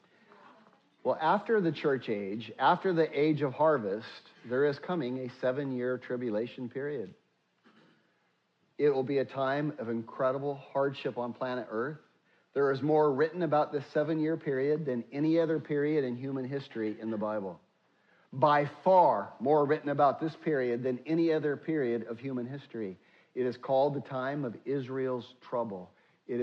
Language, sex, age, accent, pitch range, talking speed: English, male, 50-69, American, 125-160 Hz, 155 wpm